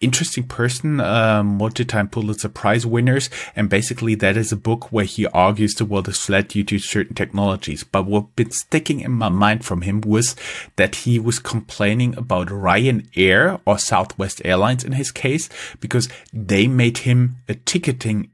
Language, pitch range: English, 105-125 Hz